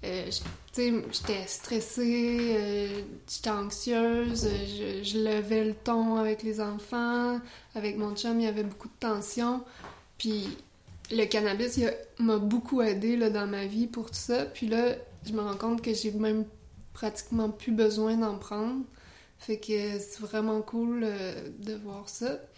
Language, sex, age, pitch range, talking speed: French, female, 20-39, 215-240 Hz, 170 wpm